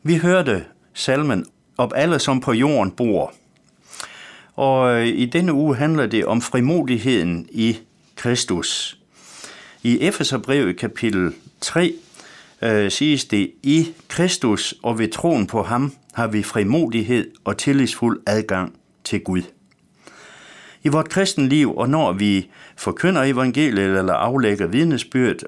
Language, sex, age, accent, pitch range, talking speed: Danish, male, 60-79, native, 105-140 Hz, 120 wpm